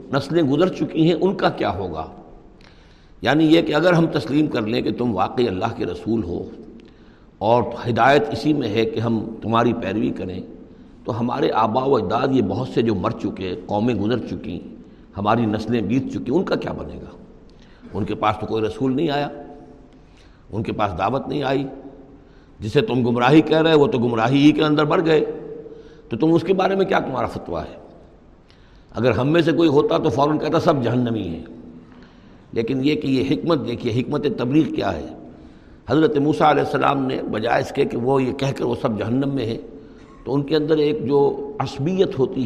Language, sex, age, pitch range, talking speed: Urdu, male, 60-79, 110-155 Hz, 200 wpm